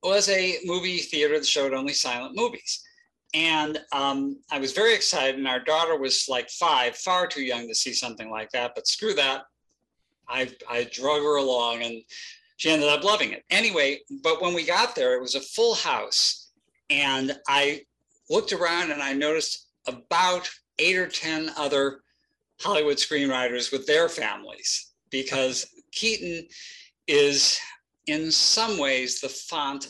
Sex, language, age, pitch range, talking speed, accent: male, English, 50-69, 125-175 Hz, 160 wpm, American